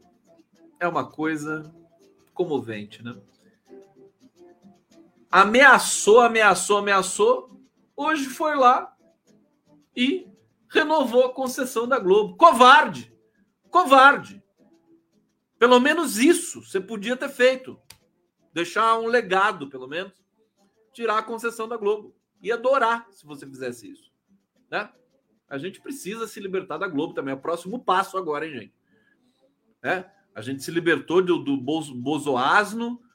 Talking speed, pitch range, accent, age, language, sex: 120 wpm, 155-250 Hz, Brazilian, 50-69, Portuguese, male